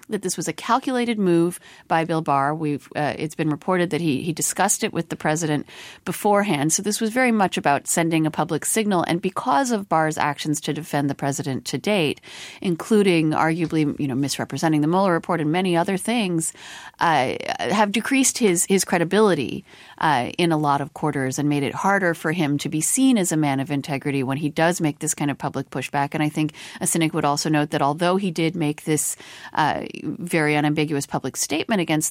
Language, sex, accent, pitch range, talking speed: English, female, American, 140-175 Hz, 205 wpm